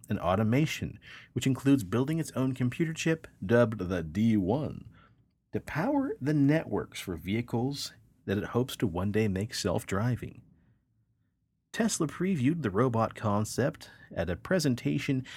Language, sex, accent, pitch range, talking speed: English, male, American, 100-140 Hz, 135 wpm